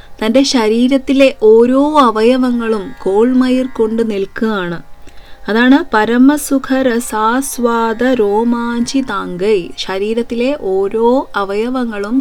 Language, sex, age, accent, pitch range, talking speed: Malayalam, female, 20-39, native, 200-255 Hz, 70 wpm